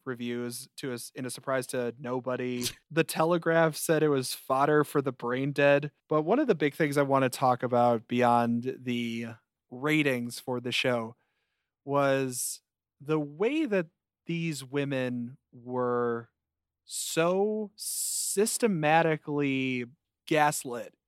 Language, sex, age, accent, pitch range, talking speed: English, male, 30-49, American, 120-145 Hz, 130 wpm